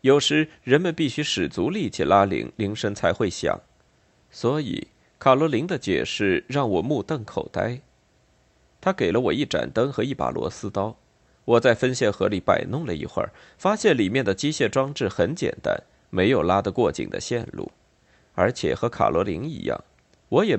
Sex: male